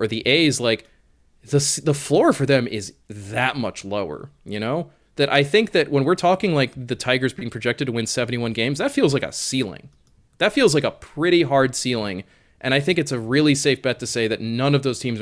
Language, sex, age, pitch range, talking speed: English, male, 20-39, 115-145 Hz, 230 wpm